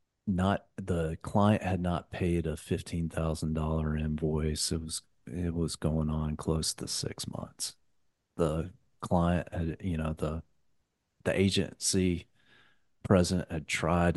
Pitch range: 80-95 Hz